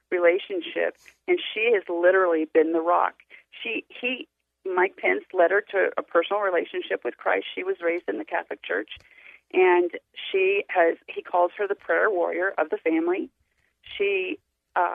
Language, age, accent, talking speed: English, 40-59, American, 165 wpm